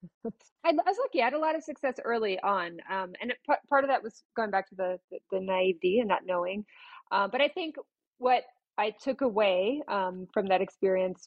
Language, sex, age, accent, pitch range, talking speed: English, female, 30-49, American, 185-230 Hz, 220 wpm